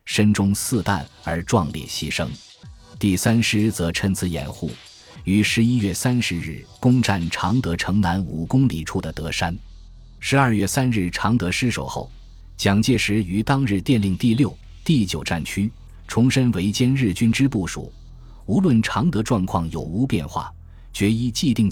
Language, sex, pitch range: Chinese, male, 85-115 Hz